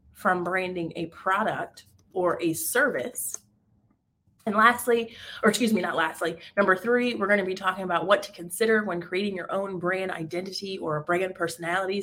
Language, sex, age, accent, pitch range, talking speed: English, female, 30-49, American, 175-225 Hz, 170 wpm